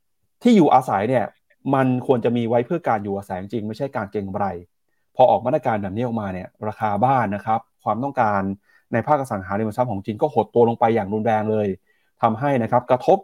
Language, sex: Thai, male